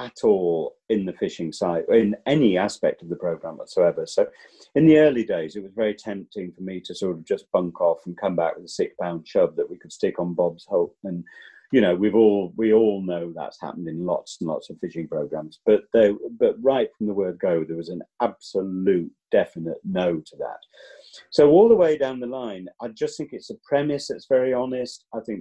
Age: 40-59